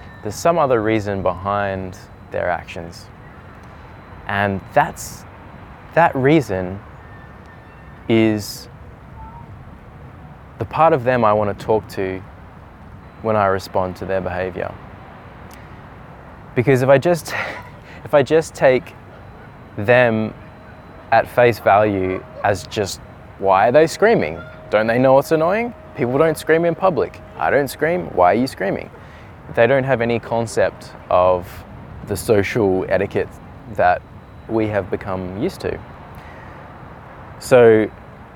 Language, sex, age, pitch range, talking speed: English, male, 20-39, 95-120 Hz, 120 wpm